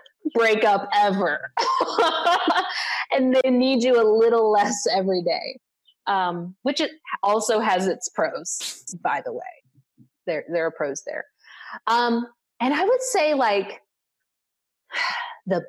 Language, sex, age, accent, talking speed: English, female, 30-49, American, 130 wpm